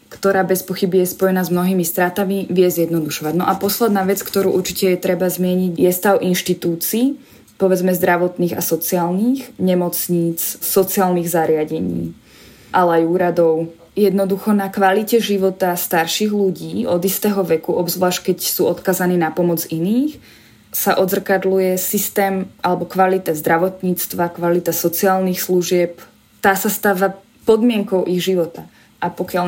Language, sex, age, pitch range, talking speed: Slovak, female, 20-39, 175-195 Hz, 130 wpm